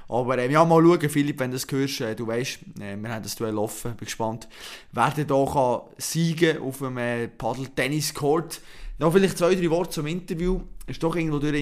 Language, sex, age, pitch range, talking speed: German, male, 20-39, 125-160 Hz, 215 wpm